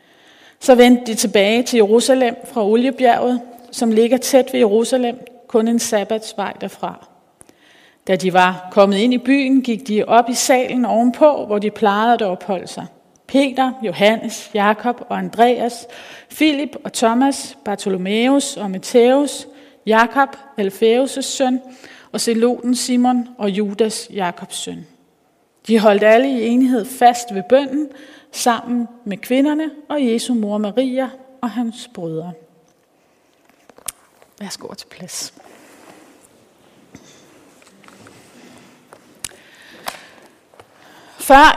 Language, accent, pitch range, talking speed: Danish, native, 215-255 Hz, 115 wpm